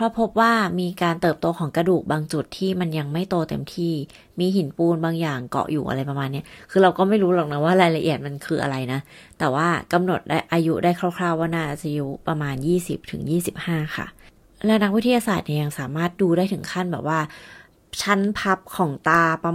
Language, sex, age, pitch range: Thai, female, 30-49, 155-190 Hz